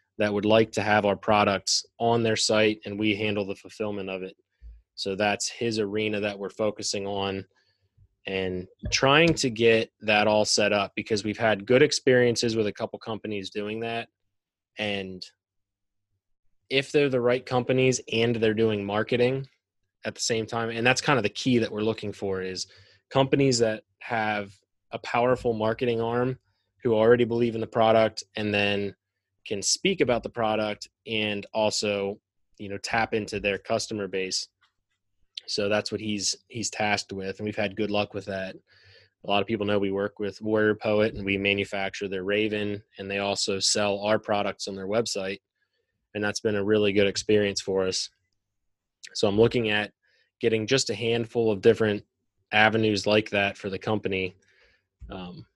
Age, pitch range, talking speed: 20-39, 100-110 Hz, 175 wpm